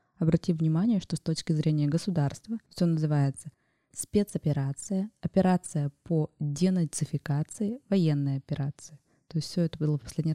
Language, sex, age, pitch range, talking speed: Russian, female, 20-39, 145-175 Hz, 130 wpm